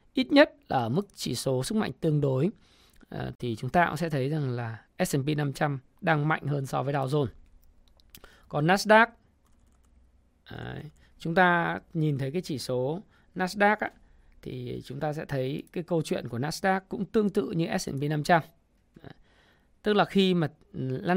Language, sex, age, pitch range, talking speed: Vietnamese, male, 20-39, 120-175 Hz, 160 wpm